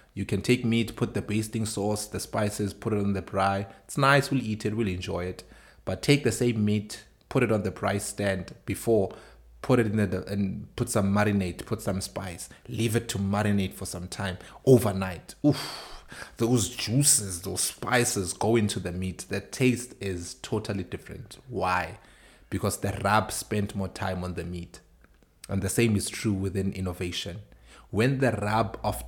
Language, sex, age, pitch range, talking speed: English, male, 30-49, 95-110 Hz, 185 wpm